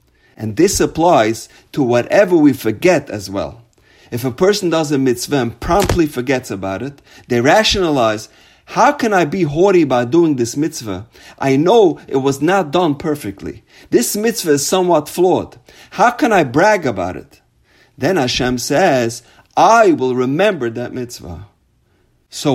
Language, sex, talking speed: English, male, 155 wpm